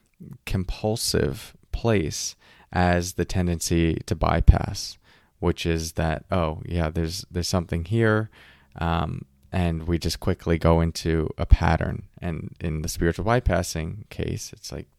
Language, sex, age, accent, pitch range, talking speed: English, male, 30-49, American, 85-105 Hz, 130 wpm